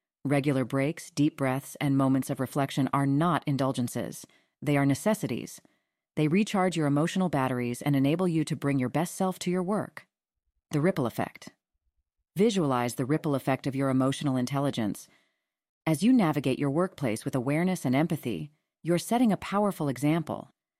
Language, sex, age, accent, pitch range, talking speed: English, female, 30-49, American, 135-170 Hz, 160 wpm